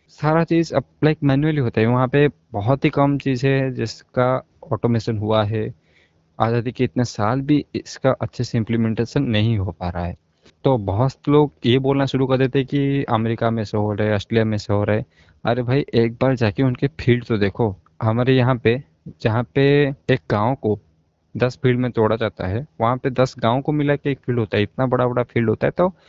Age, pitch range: 20-39, 110-135 Hz